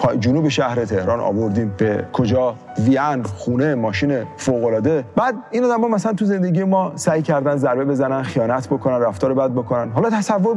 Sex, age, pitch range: male, 40-59, 125-190 Hz